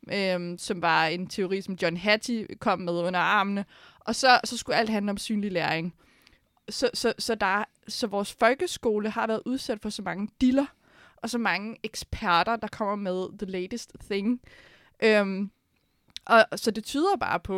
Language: Danish